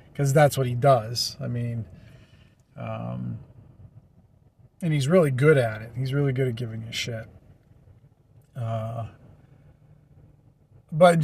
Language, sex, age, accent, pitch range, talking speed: English, male, 40-59, American, 125-150 Hz, 130 wpm